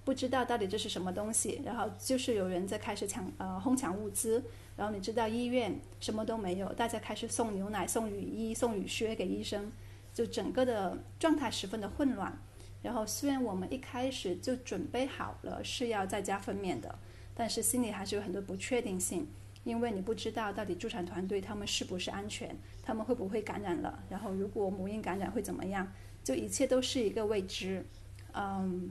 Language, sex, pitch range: English, female, 170-235 Hz